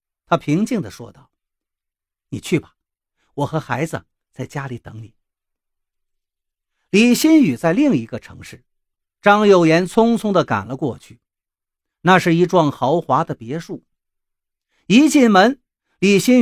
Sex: male